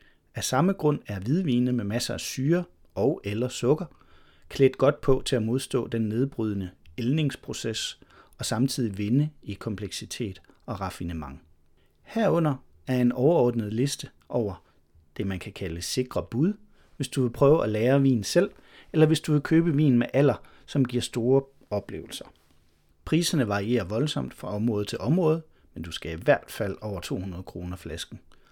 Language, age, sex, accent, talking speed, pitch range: Danish, 40-59, male, native, 160 wpm, 80-135 Hz